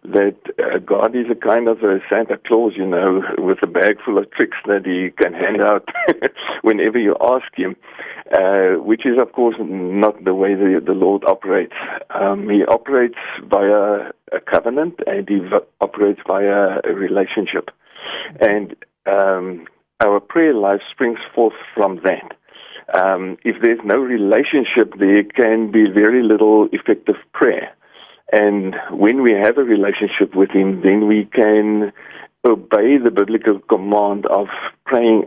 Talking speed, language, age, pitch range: 150 wpm, English, 50-69, 95-105 Hz